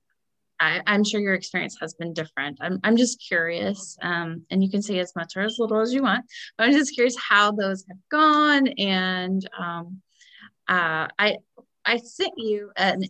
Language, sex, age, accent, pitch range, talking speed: English, female, 20-39, American, 180-220 Hz, 190 wpm